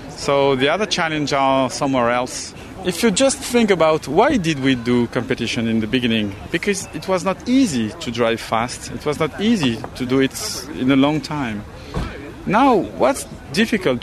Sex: male